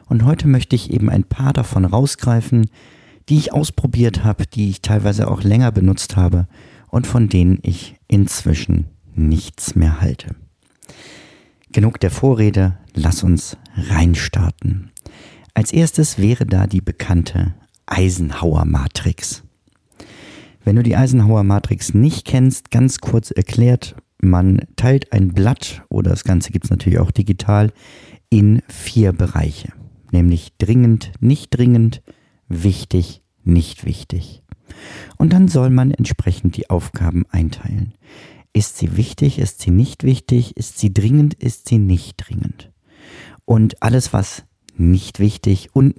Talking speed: 130 wpm